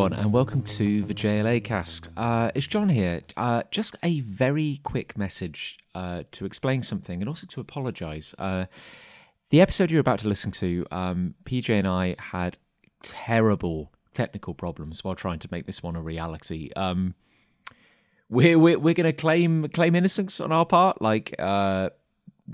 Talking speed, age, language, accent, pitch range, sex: 160 wpm, 30-49, English, British, 95-125 Hz, male